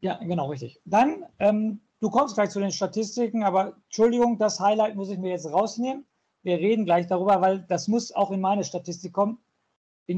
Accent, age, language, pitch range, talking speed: German, 50-69, German, 170-225 Hz, 195 wpm